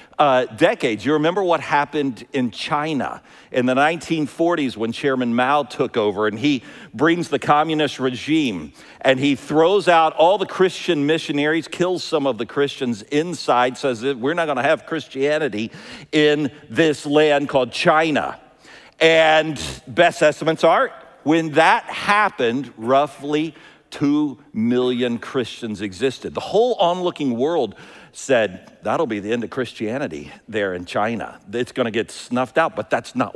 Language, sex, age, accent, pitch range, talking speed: English, male, 50-69, American, 125-165 Hz, 150 wpm